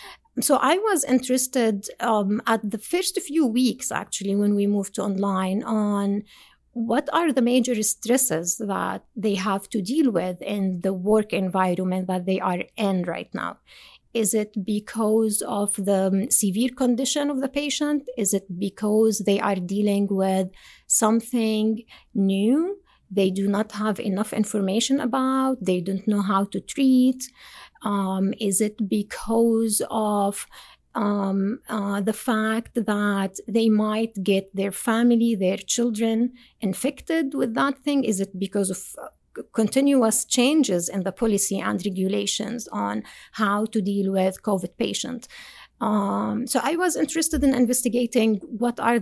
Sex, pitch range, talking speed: female, 195-245 Hz, 145 wpm